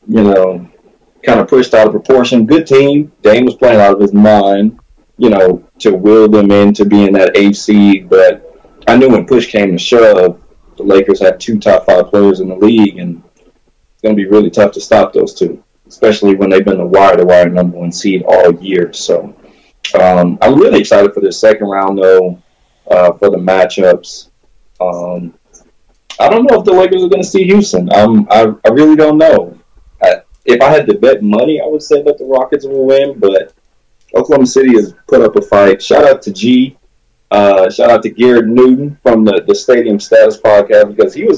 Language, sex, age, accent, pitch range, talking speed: English, male, 20-39, American, 95-135 Hz, 205 wpm